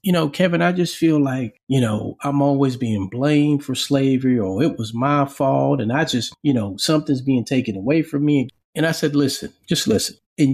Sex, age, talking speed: male, 40-59, 215 wpm